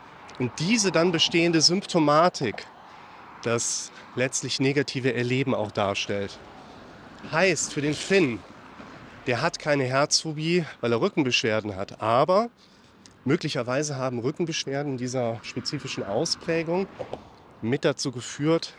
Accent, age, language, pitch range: German, 30-49, German, 120-155 Hz